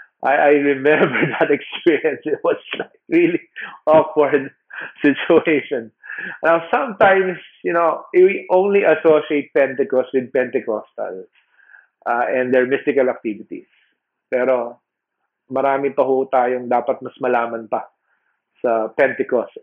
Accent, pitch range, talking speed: Filipino, 125-170 Hz, 105 wpm